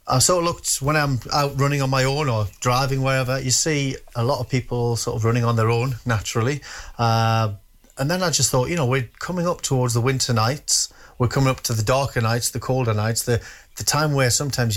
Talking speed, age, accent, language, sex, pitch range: 230 wpm, 30-49, British, English, male, 115-130 Hz